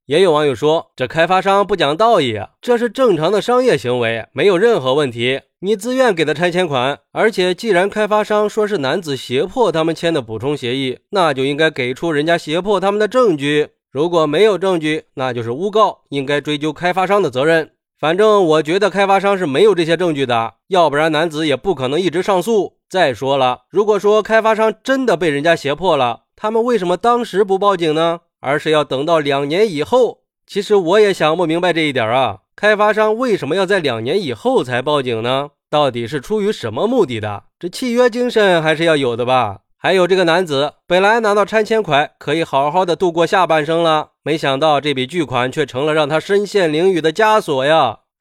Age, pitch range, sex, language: 20-39, 145-205 Hz, male, Chinese